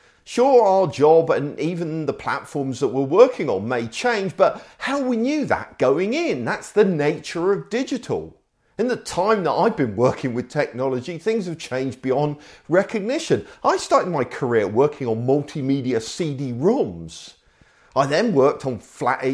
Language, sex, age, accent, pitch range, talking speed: English, male, 50-69, British, 130-215 Hz, 165 wpm